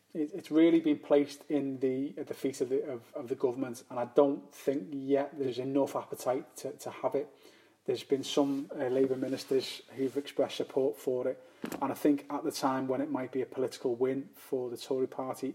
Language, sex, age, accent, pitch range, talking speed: English, male, 30-49, British, 125-145 Hz, 210 wpm